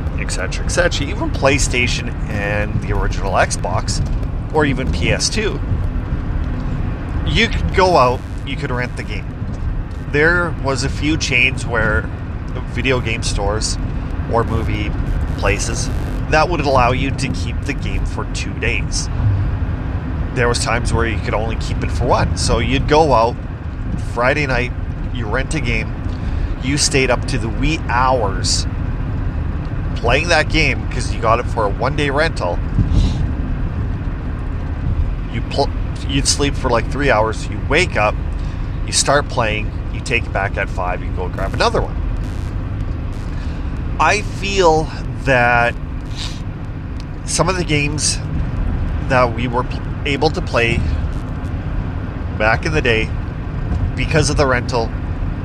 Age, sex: 30-49, male